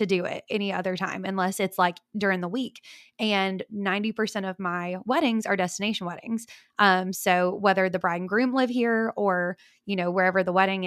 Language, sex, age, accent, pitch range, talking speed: English, female, 20-39, American, 185-220 Hz, 195 wpm